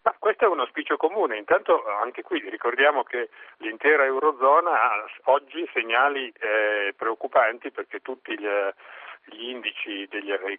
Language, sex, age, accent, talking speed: Italian, male, 40-59, native, 140 wpm